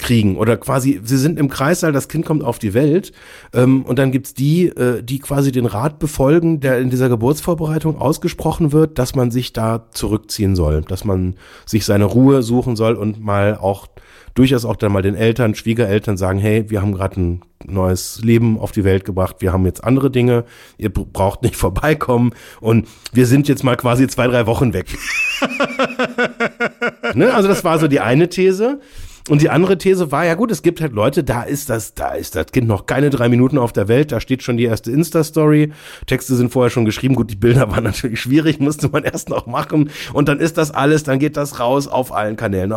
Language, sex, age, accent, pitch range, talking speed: German, male, 30-49, German, 110-150 Hz, 215 wpm